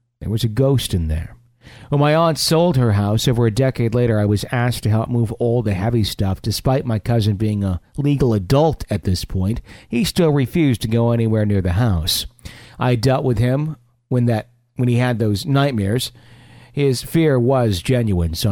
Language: English